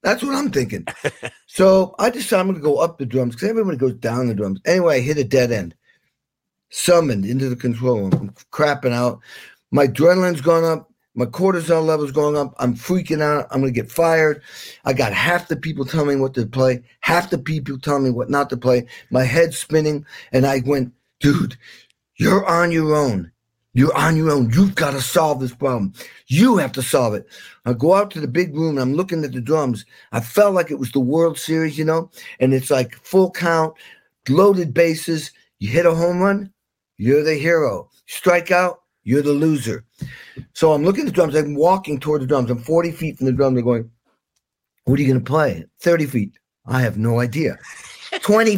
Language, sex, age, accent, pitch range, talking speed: English, male, 50-69, American, 130-170 Hz, 210 wpm